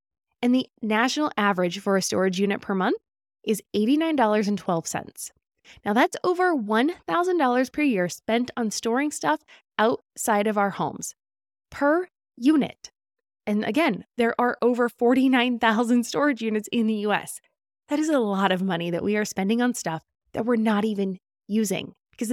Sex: female